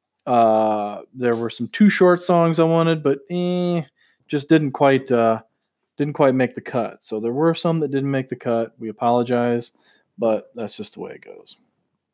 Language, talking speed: English, 190 wpm